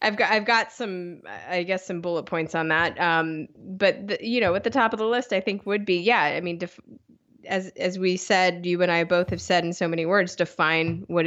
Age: 20-39